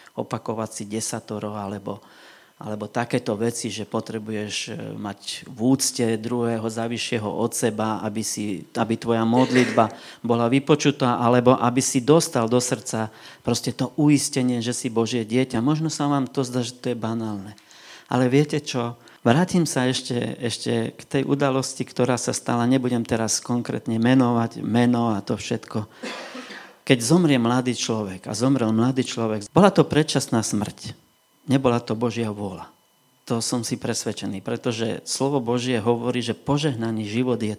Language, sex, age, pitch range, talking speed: Slovak, male, 40-59, 110-130 Hz, 150 wpm